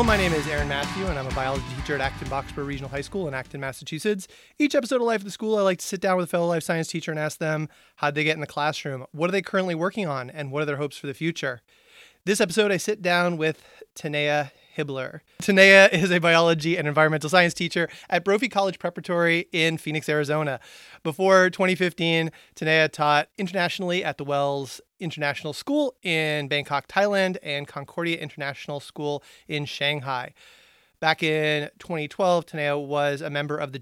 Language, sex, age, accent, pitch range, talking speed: English, male, 30-49, American, 150-190 Hz, 195 wpm